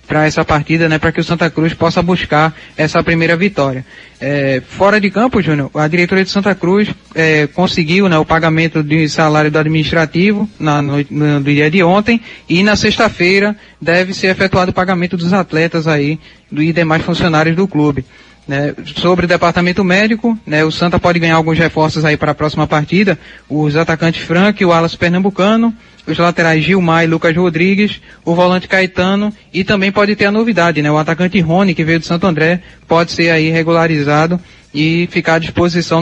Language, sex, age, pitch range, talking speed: Portuguese, male, 20-39, 155-180 Hz, 185 wpm